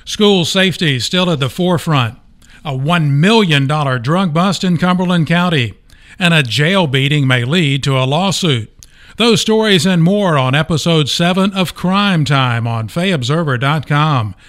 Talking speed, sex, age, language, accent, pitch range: 150 wpm, male, 50-69, English, American, 135-170 Hz